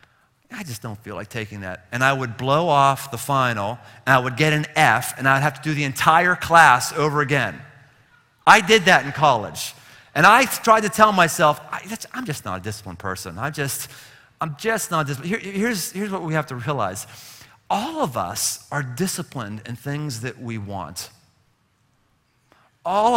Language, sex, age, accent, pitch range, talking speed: English, male, 40-59, American, 120-195 Hz, 190 wpm